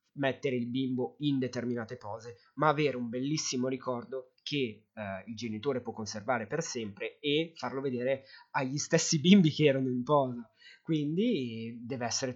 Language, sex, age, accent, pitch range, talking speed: Italian, male, 30-49, native, 120-160 Hz, 160 wpm